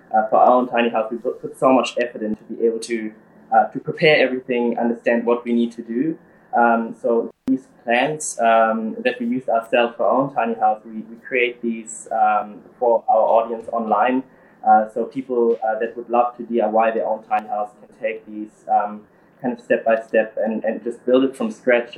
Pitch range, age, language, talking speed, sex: 115-135 Hz, 20-39, English, 215 wpm, male